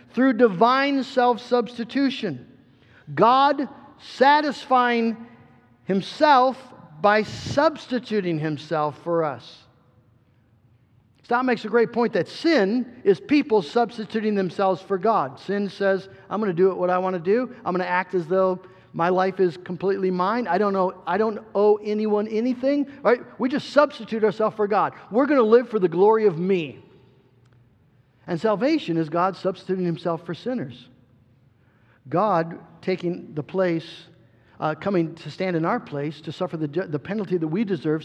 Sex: male